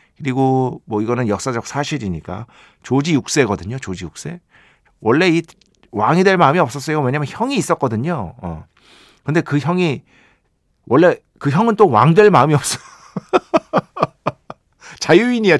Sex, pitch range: male, 110-170 Hz